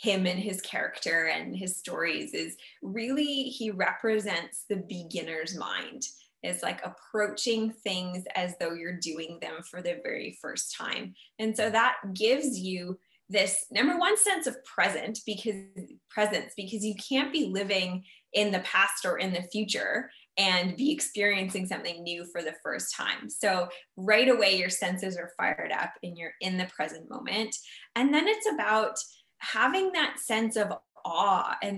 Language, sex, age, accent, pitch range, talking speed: English, female, 20-39, American, 185-250 Hz, 160 wpm